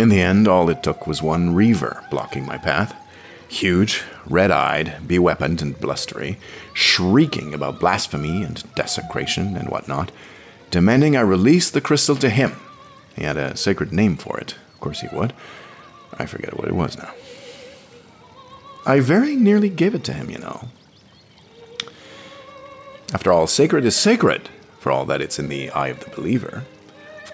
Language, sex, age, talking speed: English, male, 50-69, 160 wpm